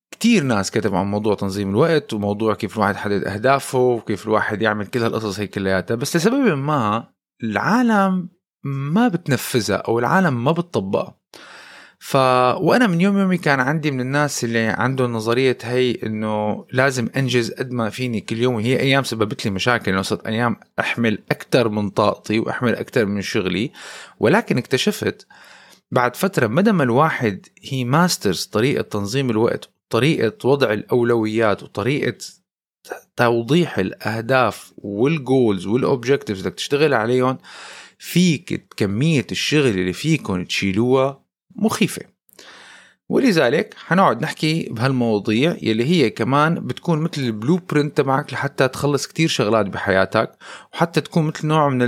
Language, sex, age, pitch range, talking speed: Arabic, male, 30-49, 110-150 Hz, 135 wpm